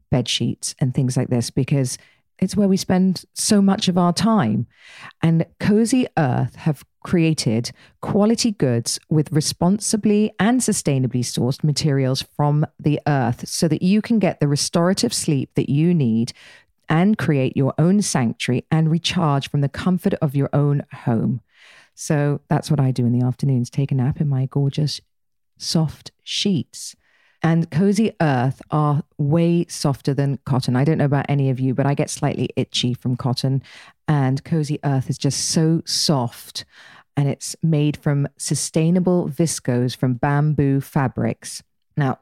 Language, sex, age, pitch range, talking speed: English, female, 40-59, 130-165 Hz, 160 wpm